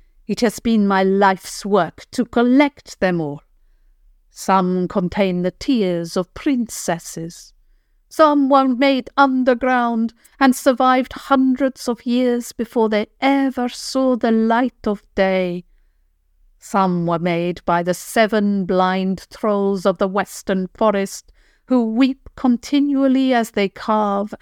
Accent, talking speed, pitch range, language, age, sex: British, 125 wpm, 180-245 Hz, English, 50-69, female